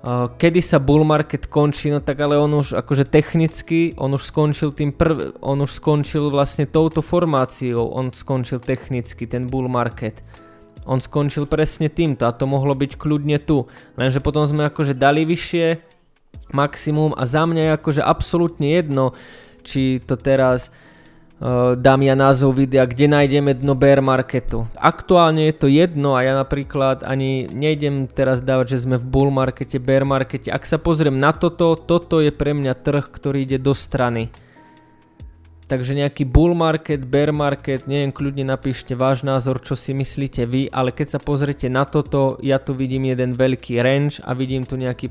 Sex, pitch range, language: male, 130-150 Hz, Slovak